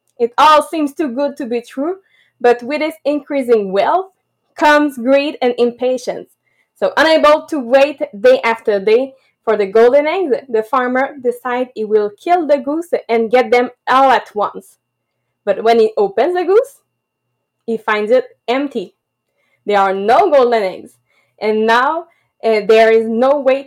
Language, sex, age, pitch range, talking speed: English, female, 20-39, 230-300 Hz, 160 wpm